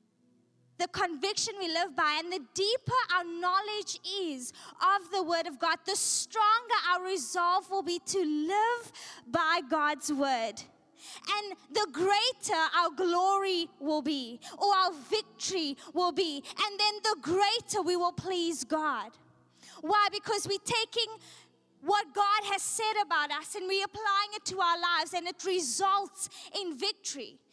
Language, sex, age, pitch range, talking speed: English, female, 20-39, 320-405 Hz, 150 wpm